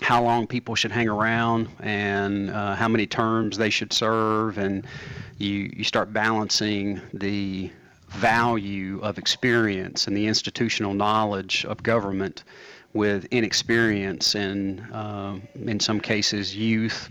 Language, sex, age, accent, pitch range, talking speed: English, male, 30-49, American, 100-115 Hz, 125 wpm